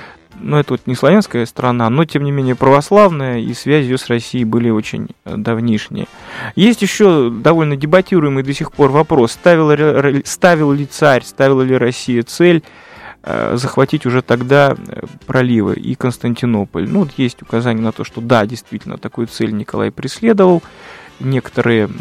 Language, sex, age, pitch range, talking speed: Russian, male, 20-39, 120-155 Hz, 150 wpm